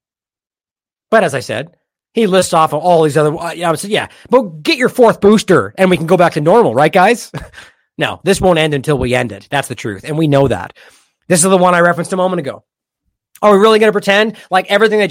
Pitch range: 170-245 Hz